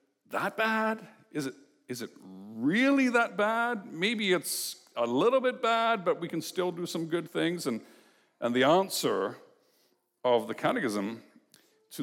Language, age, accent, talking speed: English, 60-79, American, 155 wpm